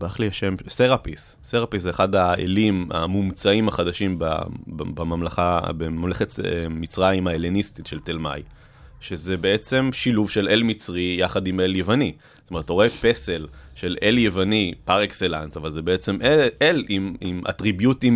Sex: male